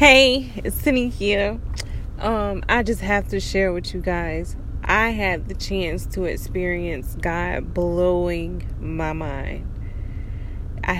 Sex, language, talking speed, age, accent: female, English, 130 wpm, 20-39, American